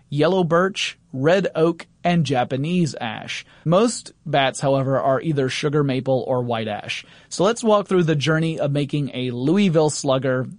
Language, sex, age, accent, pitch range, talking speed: English, male, 30-49, American, 135-160 Hz, 160 wpm